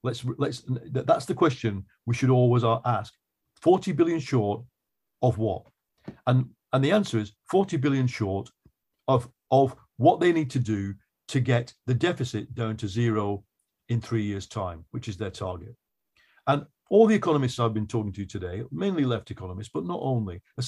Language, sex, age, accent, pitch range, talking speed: English, male, 50-69, British, 110-150 Hz, 175 wpm